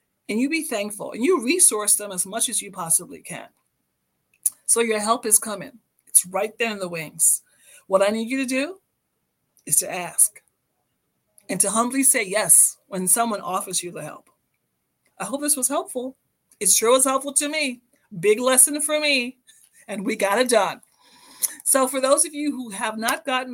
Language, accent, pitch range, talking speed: English, American, 200-265 Hz, 190 wpm